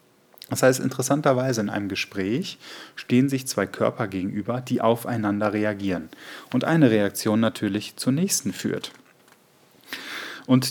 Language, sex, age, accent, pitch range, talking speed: German, male, 10-29, German, 105-130 Hz, 125 wpm